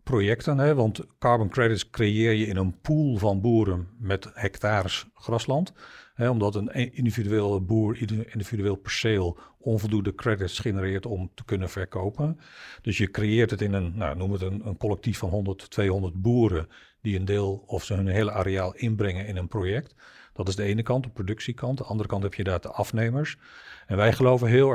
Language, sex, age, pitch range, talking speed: Dutch, male, 50-69, 95-115 Hz, 185 wpm